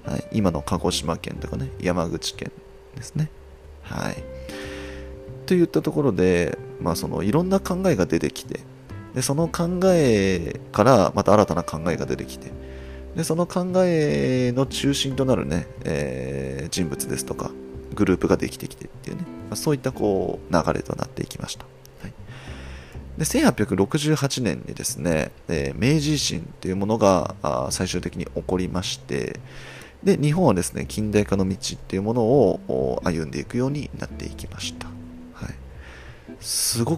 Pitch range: 80-130 Hz